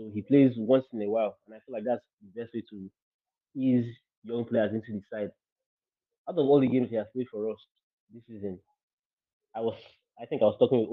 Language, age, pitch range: English, 20-39, 100-120 Hz